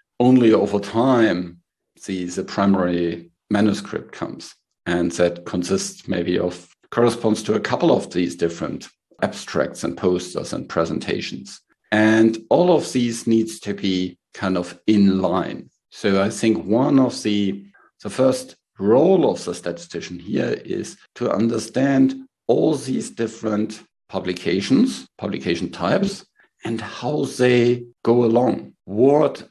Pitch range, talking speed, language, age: 95-115 Hz, 130 wpm, English, 50-69